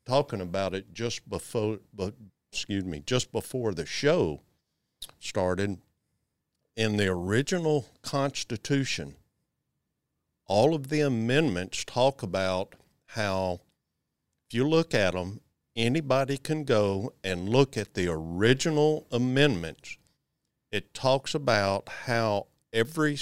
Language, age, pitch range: English, 50-69, 100-135 Hz